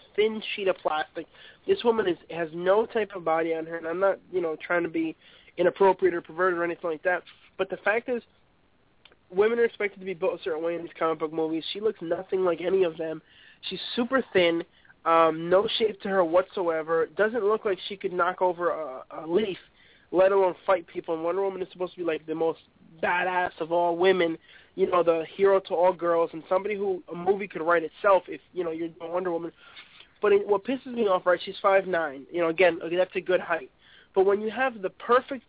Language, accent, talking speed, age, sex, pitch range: English, American, 225 wpm, 20-39, male, 175-210 Hz